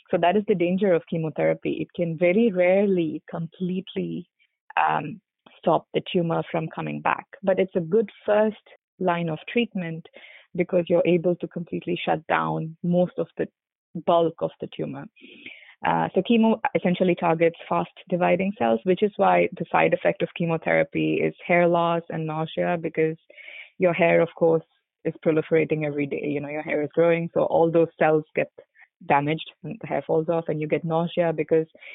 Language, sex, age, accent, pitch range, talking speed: English, female, 20-39, Indian, 160-185 Hz, 175 wpm